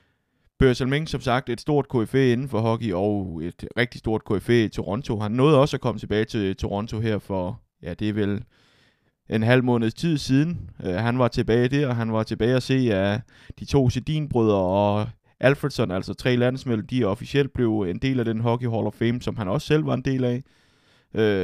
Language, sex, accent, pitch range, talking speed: Danish, male, native, 105-125 Hz, 215 wpm